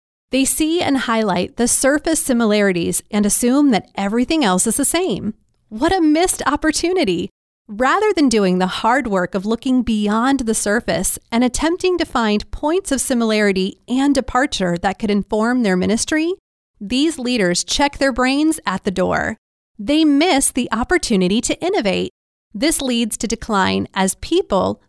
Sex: female